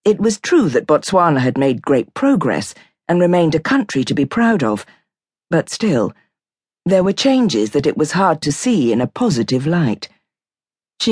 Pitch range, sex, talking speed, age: 135-195 Hz, female, 180 wpm, 50-69